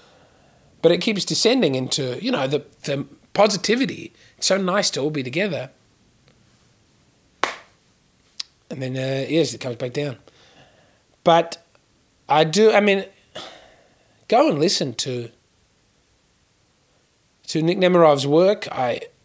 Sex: male